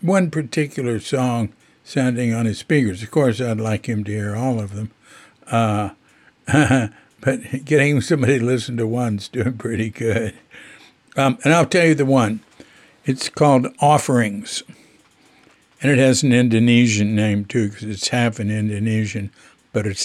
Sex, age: male, 60-79